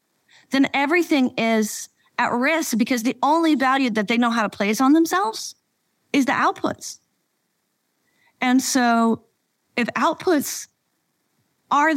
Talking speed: 125 wpm